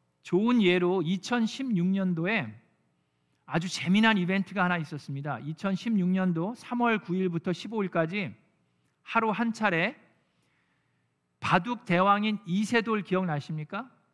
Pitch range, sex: 150-215 Hz, male